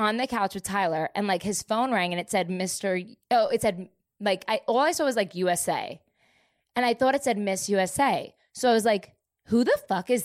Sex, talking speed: female, 235 wpm